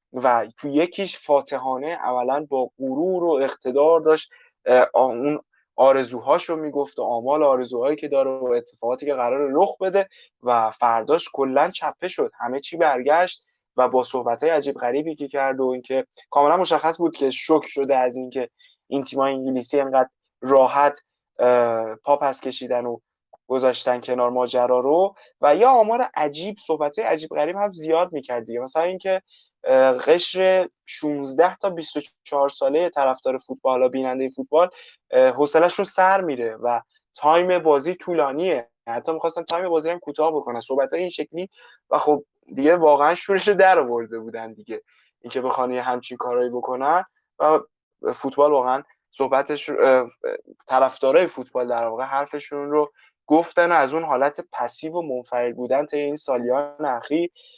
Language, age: Persian, 20-39